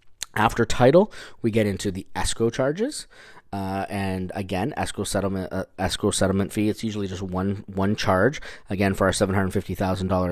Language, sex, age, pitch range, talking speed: English, male, 20-39, 90-110 Hz, 150 wpm